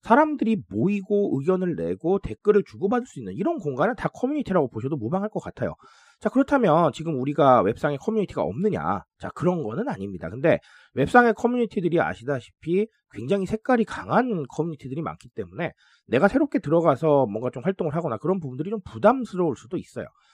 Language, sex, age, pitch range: Korean, male, 40-59, 155-225 Hz